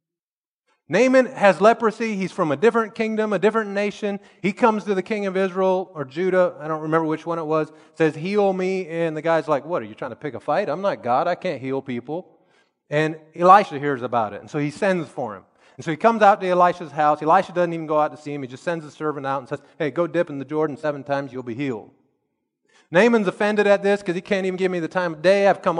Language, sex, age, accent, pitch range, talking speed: English, male, 30-49, American, 135-185 Hz, 260 wpm